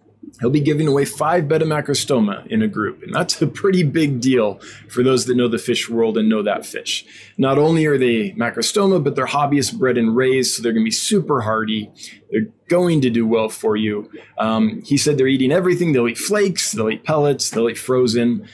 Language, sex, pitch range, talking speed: English, male, 115-160 Hz, 215 wpm